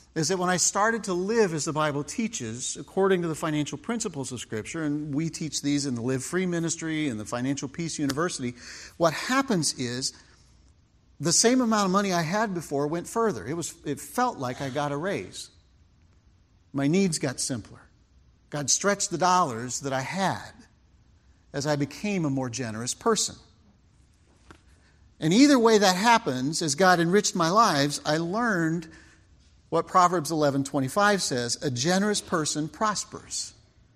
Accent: American